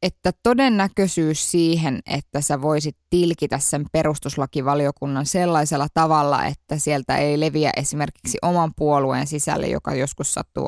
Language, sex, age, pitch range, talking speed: Finnish, female, 20-39, 145-175 Hz, 125 wpm